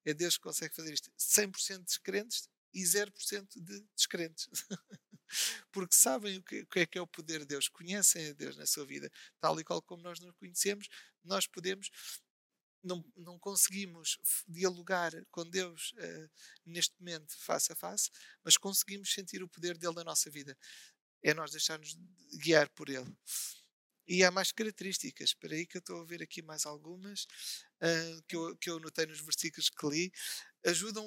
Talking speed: 170 wpm